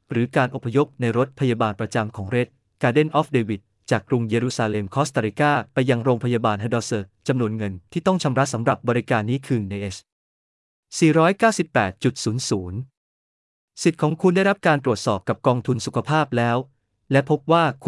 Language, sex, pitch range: Thai, male, 110-150 Hz